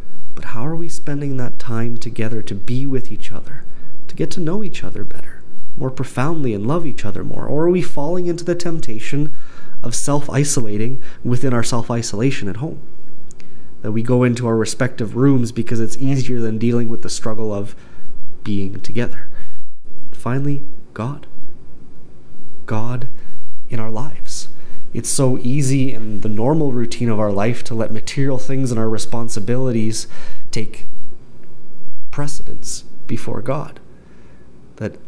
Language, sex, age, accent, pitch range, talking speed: English, male, 30-49, American, 110-135 Hz, 150 wpm